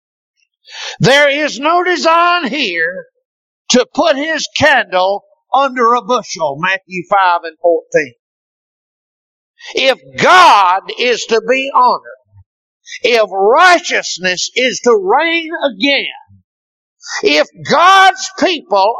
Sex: male